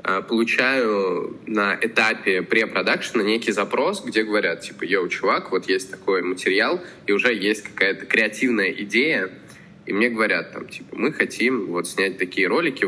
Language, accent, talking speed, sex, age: Russian, native, 150 wpm, male, 20-39